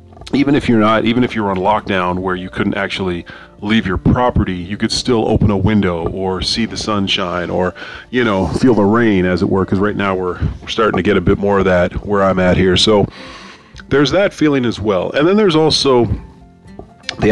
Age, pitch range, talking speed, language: 30-49, 90-110 Hz, 220 wpm, English